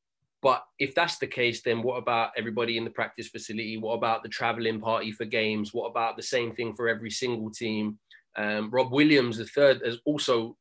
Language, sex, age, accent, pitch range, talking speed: English, male, 20-39, British, 115-135 Hz, 205 wpm